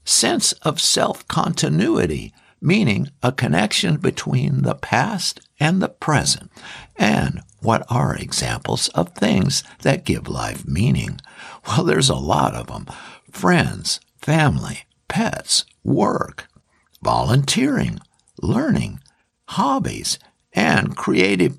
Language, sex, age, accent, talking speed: English, male, 60-79, American, 105 wpm